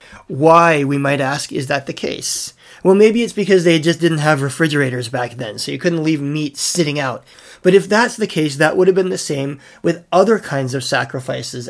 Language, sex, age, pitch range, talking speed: English, male, 30-49, 140-180 Hz, 215 wpm